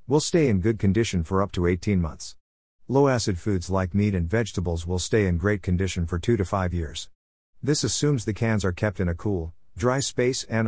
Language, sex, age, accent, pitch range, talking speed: English, male, 50-69, American, 85-115 Hz, 215 wpm